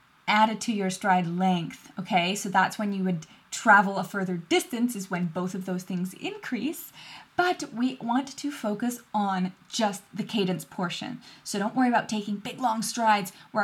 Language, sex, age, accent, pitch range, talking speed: English, female, 10-29, American, 195-250 Hz, 185 wpm